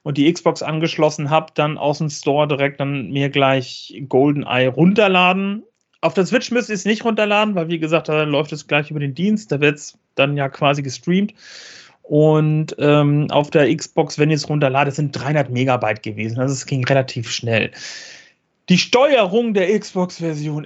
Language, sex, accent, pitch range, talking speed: German, male, German, 150-180 Hz, 180 wpm